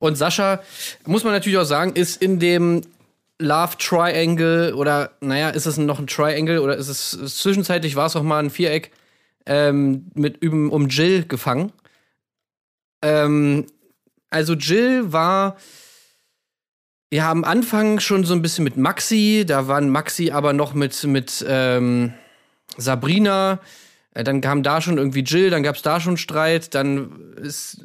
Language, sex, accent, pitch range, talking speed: German, male, German, 145-175 Hz, 155 wpm